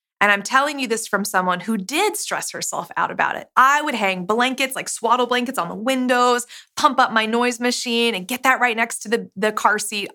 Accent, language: American, English